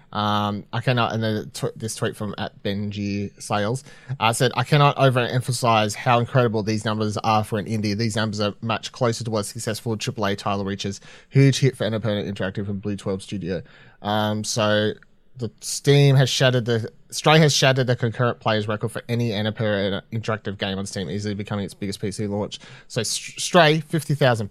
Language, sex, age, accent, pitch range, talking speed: English, male, 30-49, Australian, 105-135 Hz, 190 wpm